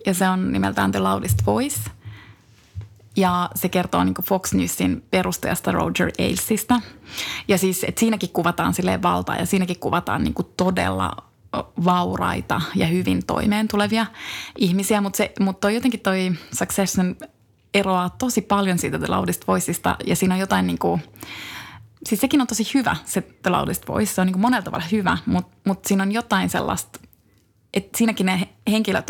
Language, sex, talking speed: Finnish, female, 155 wpm